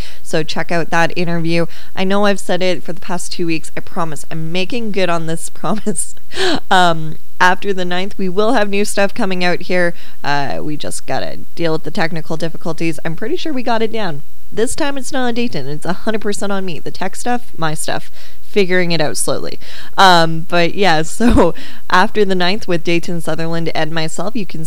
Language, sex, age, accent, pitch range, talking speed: English, female, 20-39, American, 165-200 Hz, 205 wpm